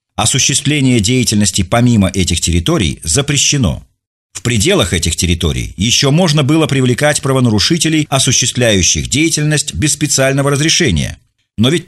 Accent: native